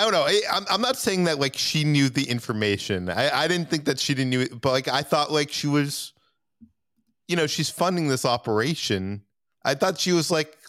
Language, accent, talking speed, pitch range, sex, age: English, American, 225 wpm, 100-140 Hz, male, 30-49